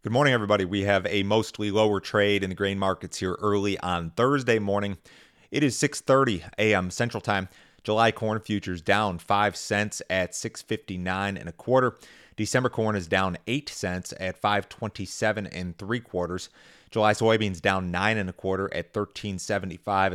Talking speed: 165 wpm